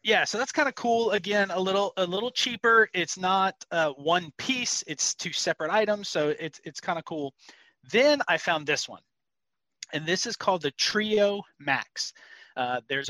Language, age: English, 30-49